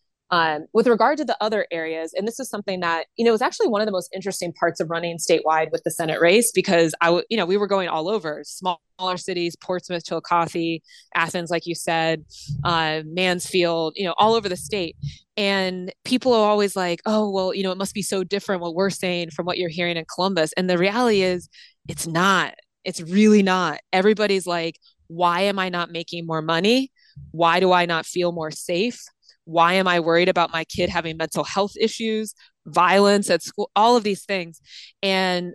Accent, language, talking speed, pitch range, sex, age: American, English, 210 wpm, 170-195 Hz, female, 20-39